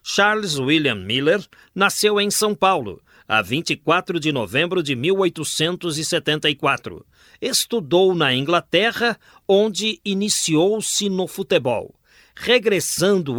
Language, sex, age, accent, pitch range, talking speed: Portuguese, male, 50-69, Brazilian, 150-205 Hz, 95 wpm